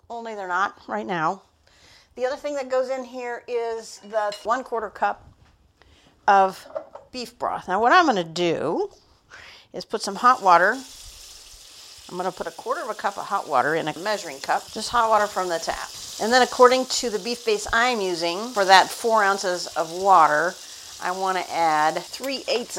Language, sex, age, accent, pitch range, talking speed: English, female, 50-69, American, 175-240 Hz, 195 wpm